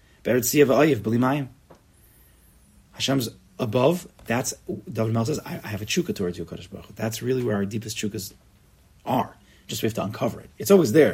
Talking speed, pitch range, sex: 165 wpm, 100-130 Hz, male